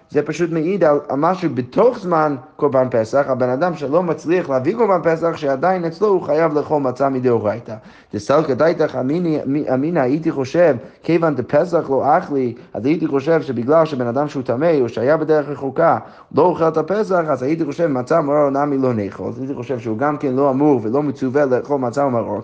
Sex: male